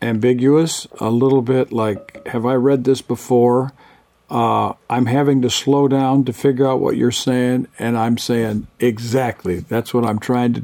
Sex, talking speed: male, 175 wpm